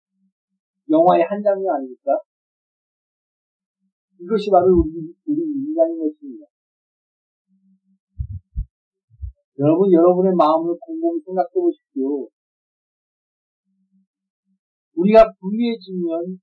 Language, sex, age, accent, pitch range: Korean, male, 40-59, native, 180-245 Hz